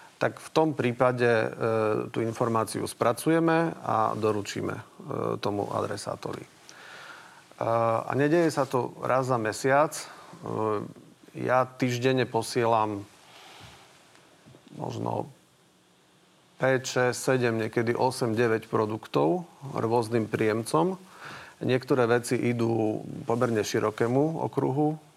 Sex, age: male, 40-59